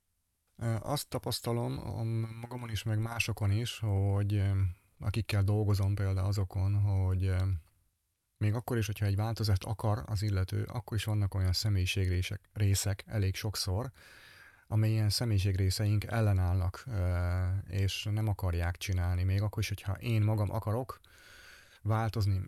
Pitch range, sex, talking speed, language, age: 95-110 Hz, male, 125 wpm, Hungarian, 30-49